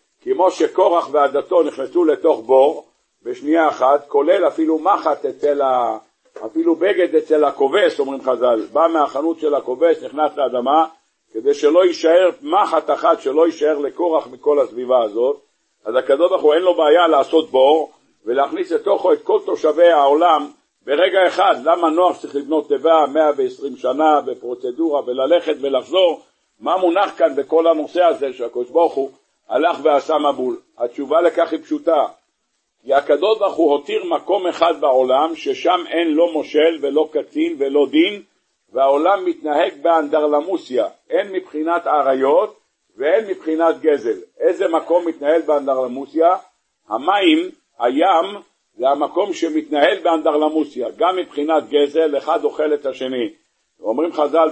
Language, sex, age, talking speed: Hebrew, male, 60-79, 125 wpm